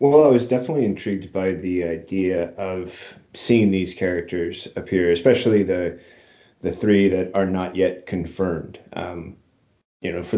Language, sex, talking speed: English, male, 150 wpm